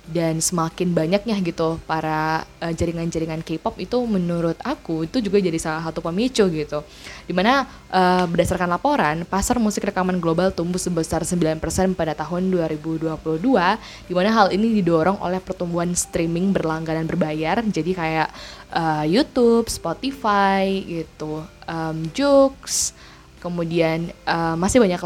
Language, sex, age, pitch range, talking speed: Indonesian, female, 20-39, 165-195 Hz, 125 wpm